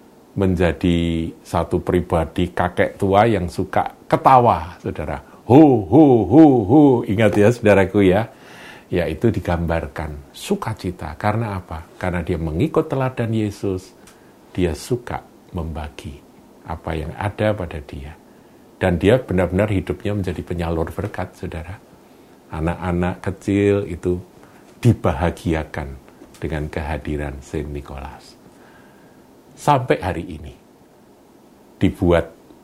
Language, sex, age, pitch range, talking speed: Indonesian, male, 50-69, 80-100 Hz, 100 wpm